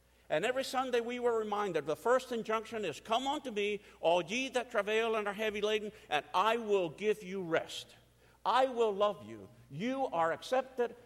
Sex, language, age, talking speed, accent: male, English, 50-69, 185 wpm, American